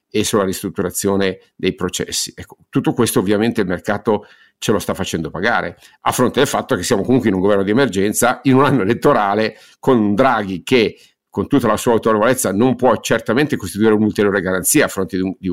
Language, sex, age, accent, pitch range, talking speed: Italian, male, 50-69, native, 100-130 Hz, 185 wpm